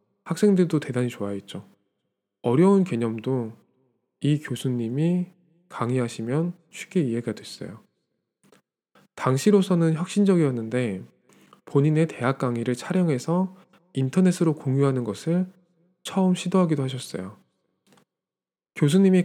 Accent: native